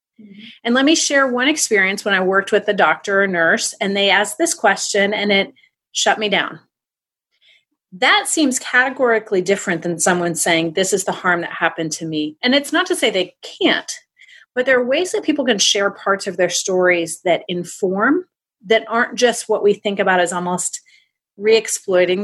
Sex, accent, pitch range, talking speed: female, American, 180-250 Hz, 190 wpm